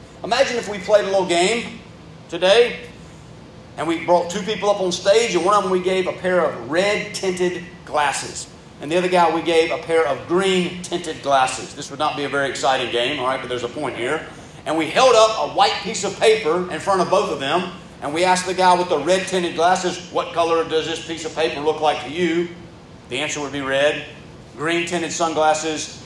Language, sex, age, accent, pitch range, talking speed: English, male, 40-59, American, 160-205 Hz, 230 wpm